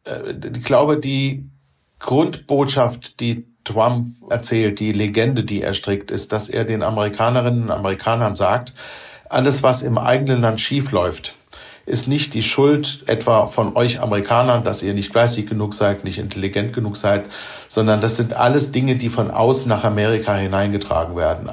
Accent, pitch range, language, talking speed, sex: German, 105-120 Hz, German, 155 wpm, male